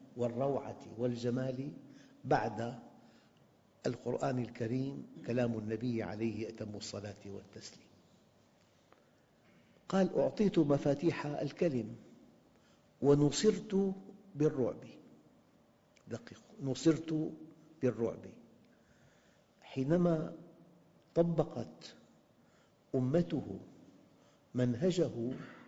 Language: Arabic